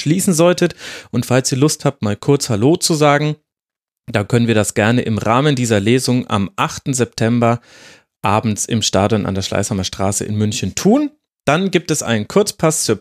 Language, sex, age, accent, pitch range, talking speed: German, male, 30-49, German, 110-155 Hz, 185 wpm